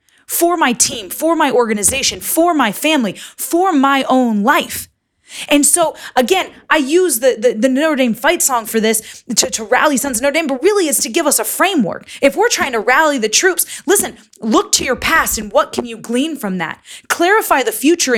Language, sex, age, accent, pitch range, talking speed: English, female, 20-39, American, 240-330 Hz, 210 wpm